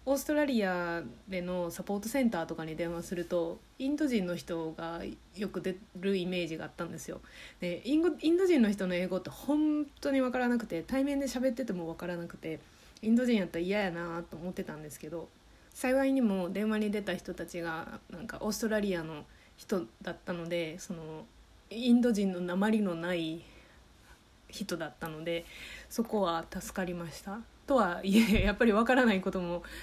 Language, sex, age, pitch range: Japanese, female, 20-39, 170-215 Hz